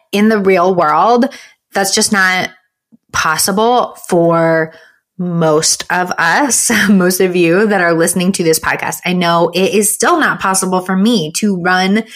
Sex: female